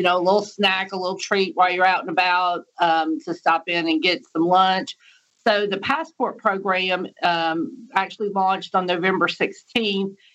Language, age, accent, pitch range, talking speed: English, 50-69, American, 175-210 Hz, 180 wpm